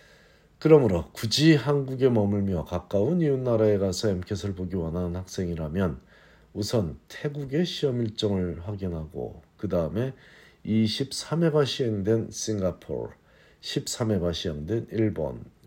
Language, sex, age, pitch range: Korean, male, 50-69, 85-120 Hz